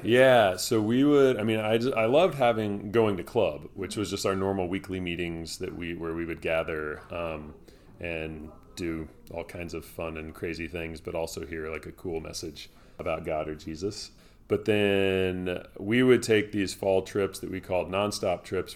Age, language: 30-49, English